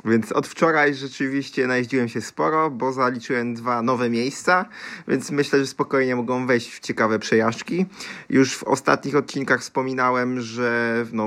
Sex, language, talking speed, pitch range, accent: male, Polish, 150 wpm, 110-135 Hz, native